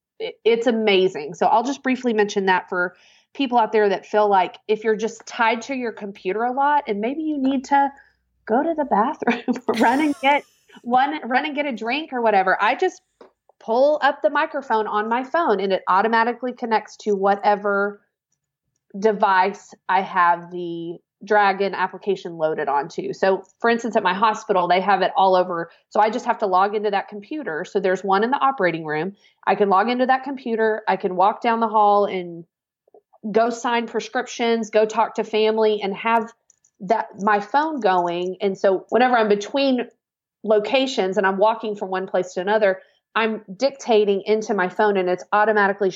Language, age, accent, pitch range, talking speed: English, 30-49, American, 190-240 Hz, 185 wpm